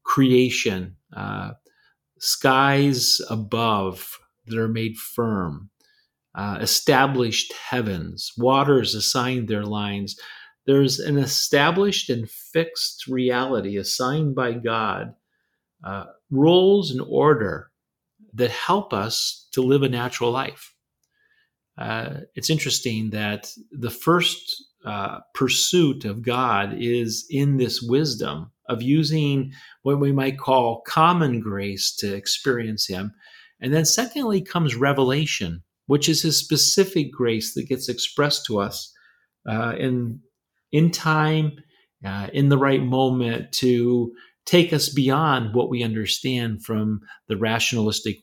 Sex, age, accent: male, 40-59, American